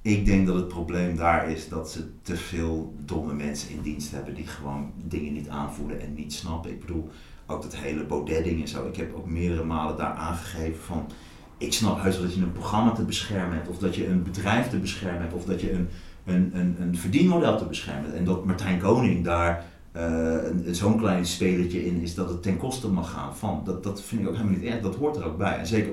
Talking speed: 240 wpm